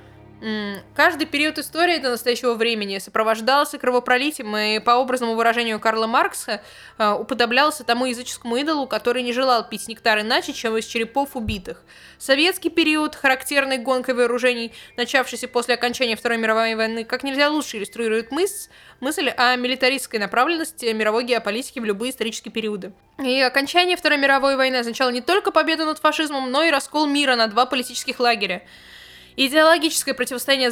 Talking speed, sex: 150 wpm, female